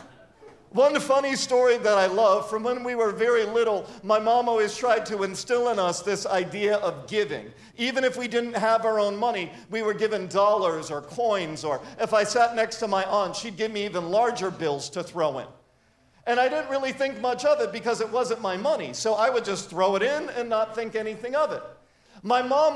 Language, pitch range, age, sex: English, 220-280 Hz, 50-69, male